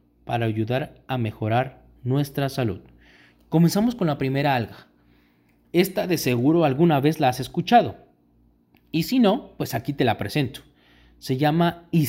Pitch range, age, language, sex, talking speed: 125-175 Hz, 30-49, Spanish, male, 145 wpm